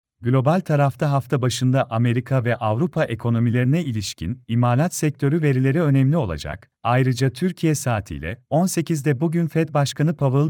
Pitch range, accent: 120-155 Hz, native